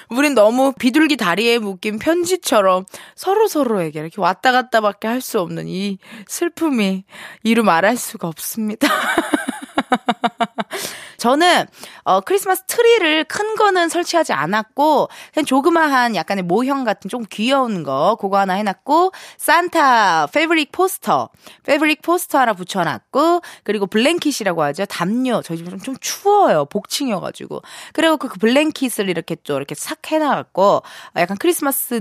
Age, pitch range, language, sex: 20-39, 205-315 Hz, Korean, female